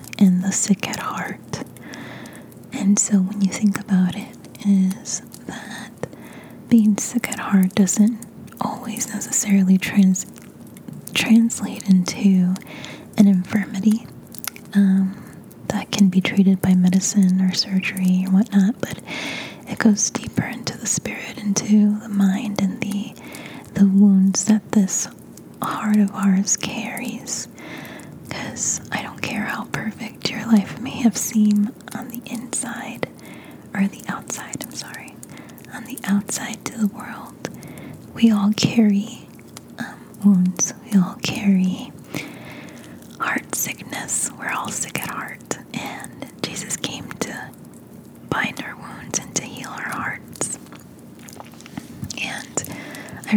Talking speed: 125 wpm